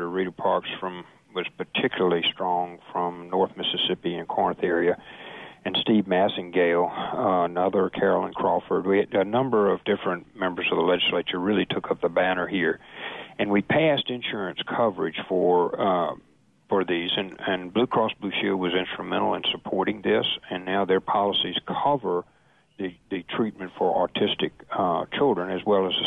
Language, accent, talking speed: English, American, 165 wpm